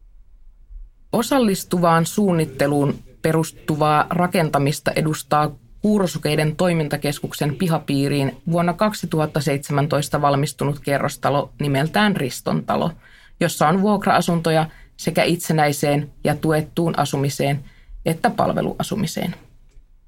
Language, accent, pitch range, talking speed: Finnish, native, 140-180 Hz, 70 wpm